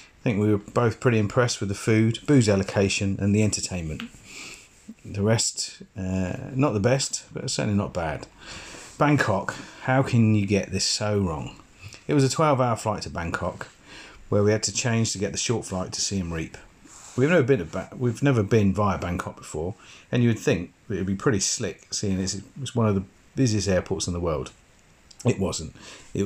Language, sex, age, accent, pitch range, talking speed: English, male, 40-59, British, 95-115 Hz, 200 wpm